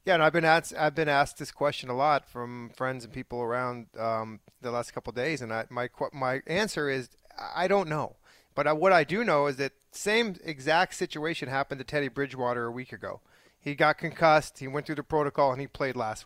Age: 30-49